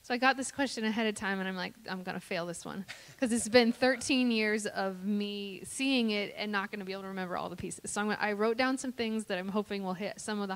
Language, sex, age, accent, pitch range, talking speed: English, female, 10-29, American, 180-205 Hz, 300 wpm